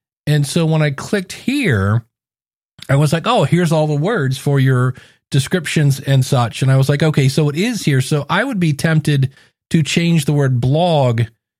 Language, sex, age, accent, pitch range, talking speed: English, male, 40-59, American, 135-160 Hz, 195 wpm